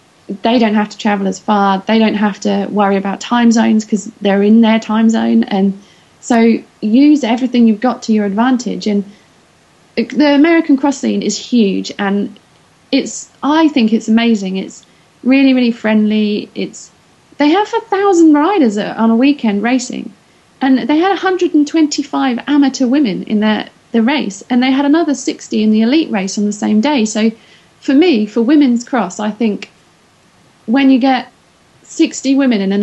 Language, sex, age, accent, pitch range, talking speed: English, female, 30-49, British, 200-245 Hz, 175 wpm